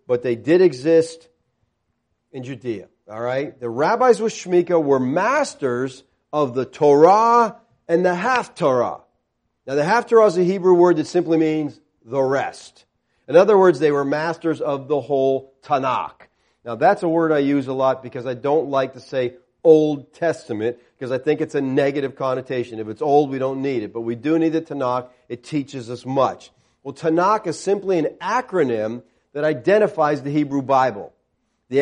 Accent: American